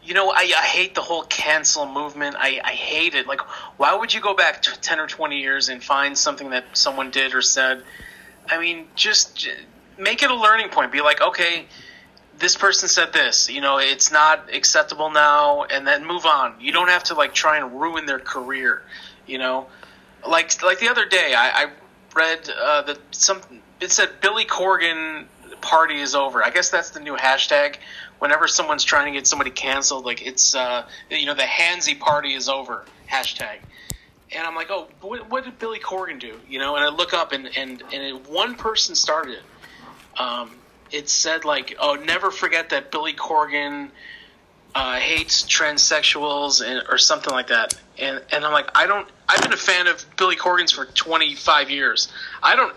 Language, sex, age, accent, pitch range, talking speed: English, male, 30-49, American, 135-165 Hz, 195 wpm